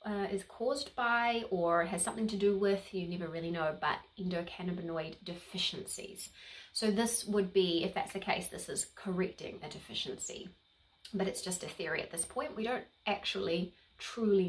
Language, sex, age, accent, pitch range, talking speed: English, female, 30-49, Australian, 185-215 Hz, 175 wpm